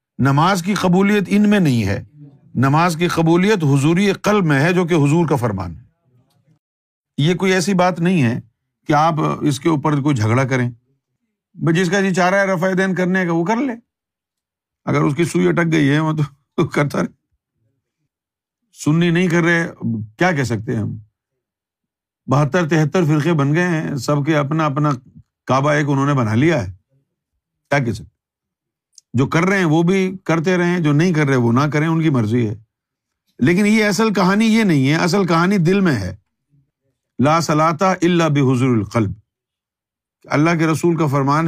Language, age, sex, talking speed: Urdu, 50-69, male, 185 wpm